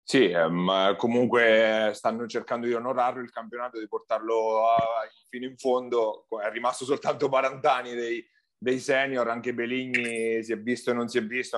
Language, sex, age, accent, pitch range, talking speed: Italian, male, 30-49, native, 110-130 Hz, 155 wpm